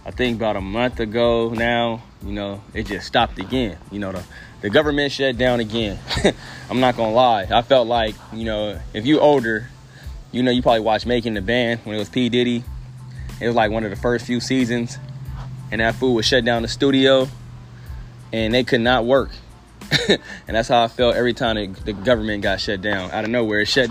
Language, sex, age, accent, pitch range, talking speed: English, male, 20-39, American, 110-125 Hz, 215 wpm